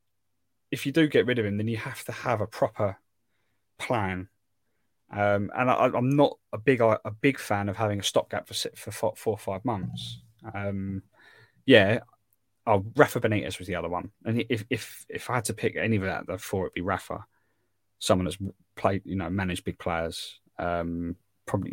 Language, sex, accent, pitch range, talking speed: English, male, British, 90-110 Hz, 195 wpm